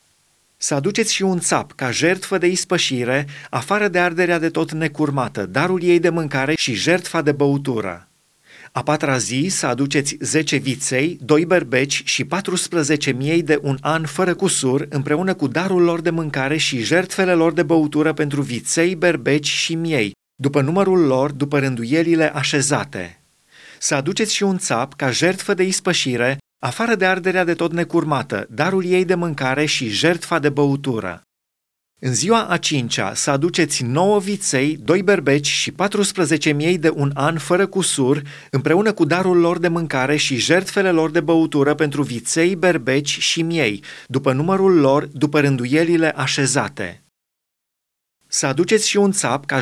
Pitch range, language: 135-175 Hz, Romanian